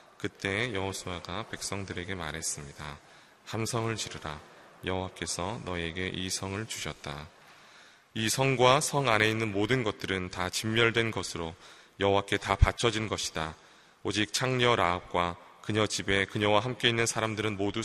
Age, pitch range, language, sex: 20-39, 85-105 Hz, Korean, male